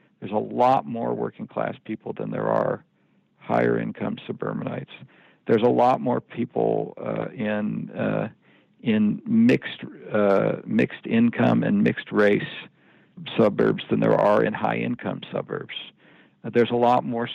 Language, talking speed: English, 145 wpm